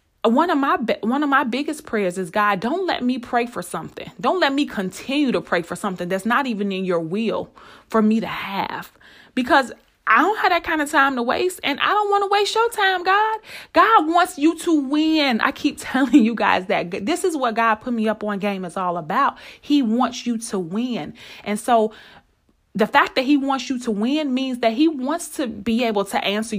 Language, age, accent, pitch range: English, 30-49, American, 210-300 Hz